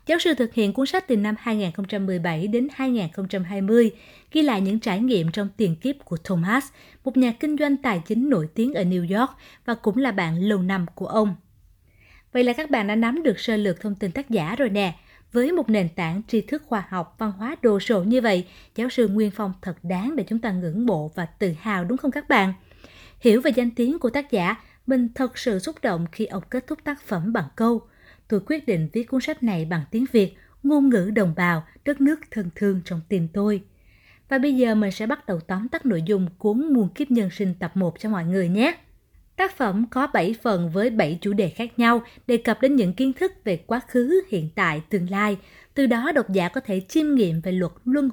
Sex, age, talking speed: female, 20-39, 230 wpm